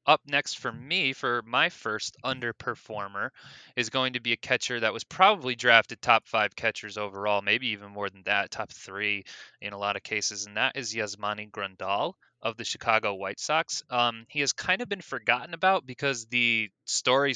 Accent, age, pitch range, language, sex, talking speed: American, 20-39, 105-125 Hz, English, male, 190 wpm